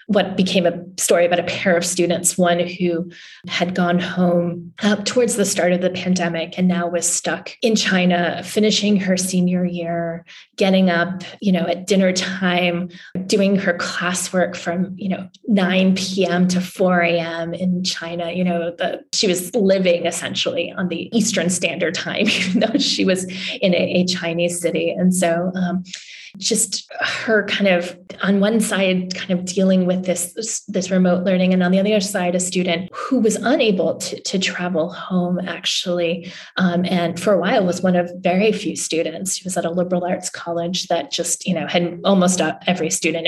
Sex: female